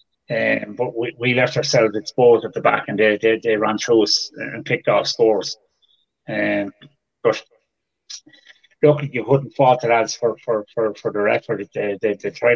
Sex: male